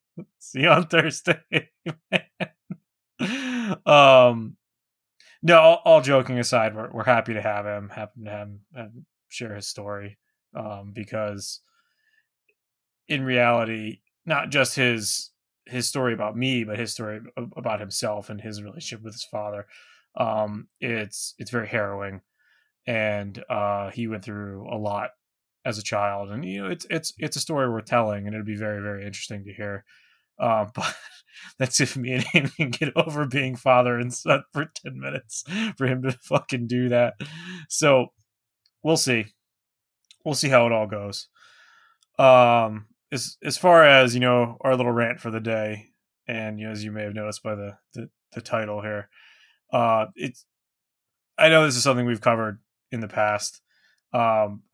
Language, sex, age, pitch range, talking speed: English, male, 20-39, 105-135 Hz, 165 wpm